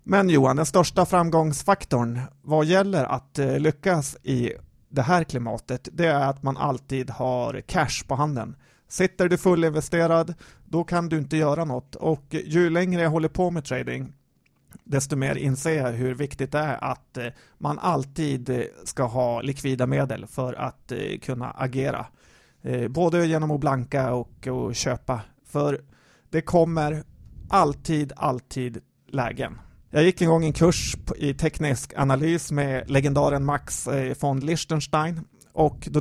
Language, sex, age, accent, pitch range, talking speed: Swedish, male, 30-49, native, 130-160 Hz, 145 wpm